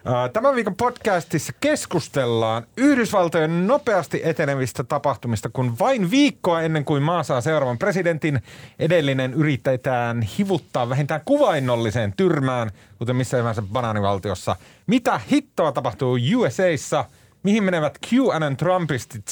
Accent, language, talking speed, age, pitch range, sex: native, Finnish, 110 wpm, 30-49, 105-160 Hz, male